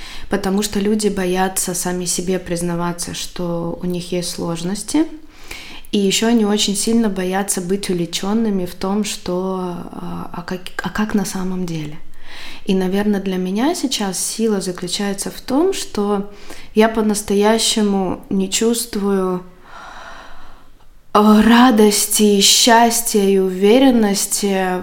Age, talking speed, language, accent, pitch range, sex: 20-39, 115 wpm, Russian, native, 185-210 Hz, female